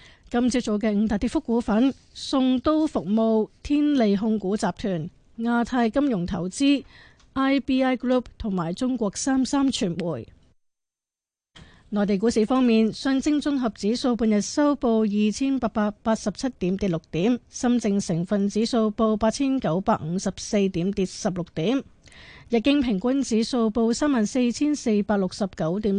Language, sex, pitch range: Chinese, female, 205-255 Hz